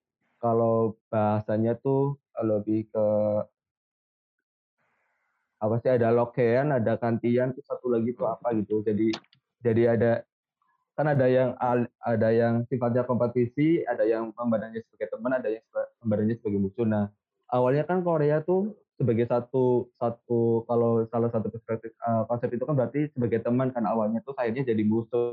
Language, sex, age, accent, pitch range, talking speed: Indonesian, male, 20-39, native, 115-130 Hz, 140 wpm